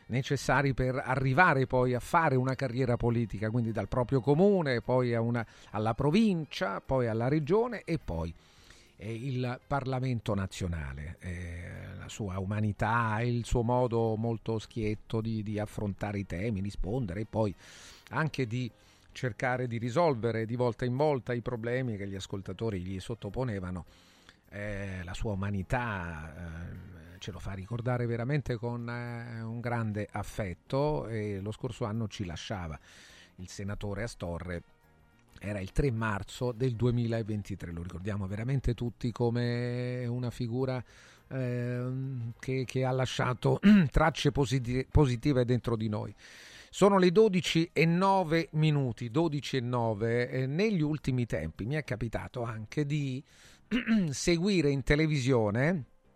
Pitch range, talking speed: 105-130 Hz, 130 wpm